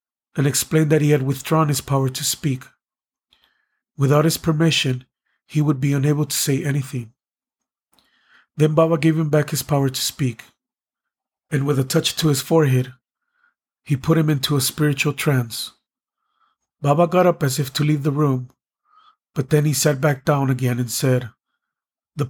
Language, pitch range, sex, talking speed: English, 130-155 Hz, male, 165 wpm